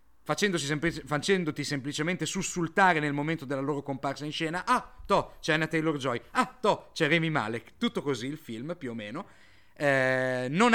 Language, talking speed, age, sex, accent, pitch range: Italian, 165 wpm, 40-59, male, native, 140-190 Hz